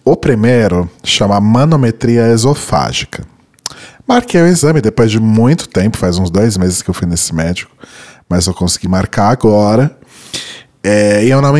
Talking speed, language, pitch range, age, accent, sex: 160 wpm, Portuguese, 95-125 Hz, 20-39, Brazilian, male